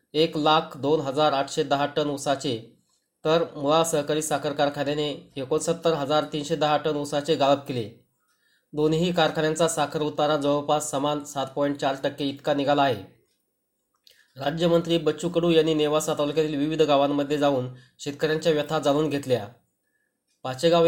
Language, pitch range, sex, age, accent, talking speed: Marathi, 145-155 Hz, male, 20-39, native, 140 wpm